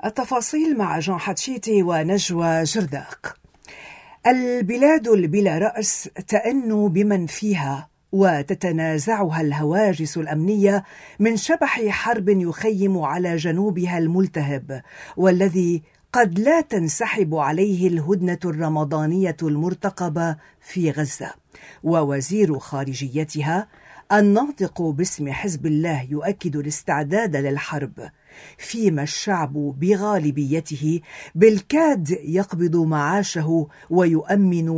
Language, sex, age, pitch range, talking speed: Arabic, female, 50-69, 155-205 Hz, 85 wpm